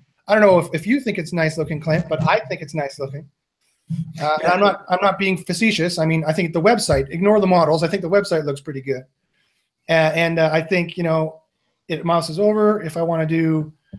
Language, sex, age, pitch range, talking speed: English, male, 30-49, 155-205 Hz, 245 wpm